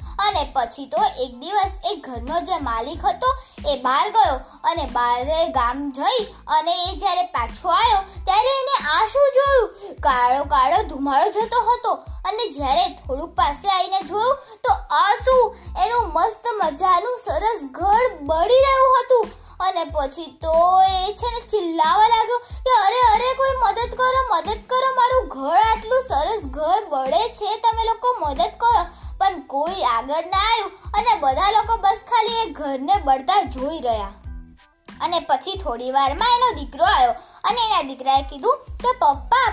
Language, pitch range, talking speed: Gujarati, 300-460 Hz, 45 wpm